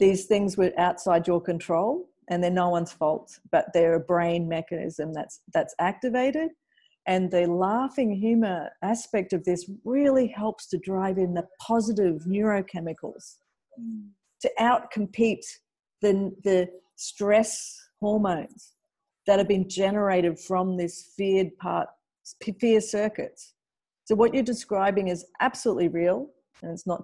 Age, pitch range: 50-69, 180-220 Hz